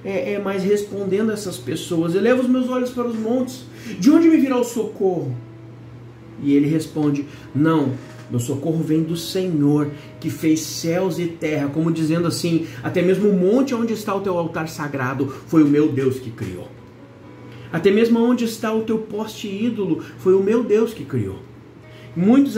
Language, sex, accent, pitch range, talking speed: Portuguese, male, Brazilian, 160-240 Hz, 180 wpm